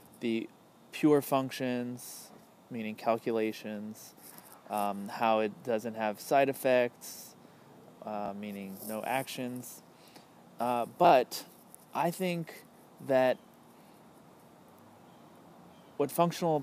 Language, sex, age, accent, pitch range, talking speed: English, male, 20-39, American, 115-150 Hz, 85 wpm